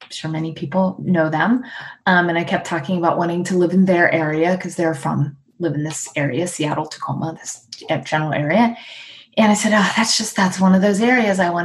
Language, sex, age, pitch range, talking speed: English, female, 20-39, 160-205 Hz, 220 wpm